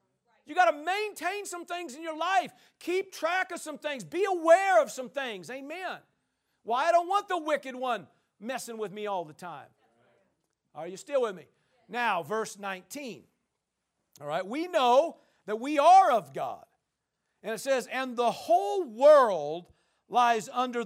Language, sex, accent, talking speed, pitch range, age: English, male, American, 170 wpm, 190-255 Hz, 50-69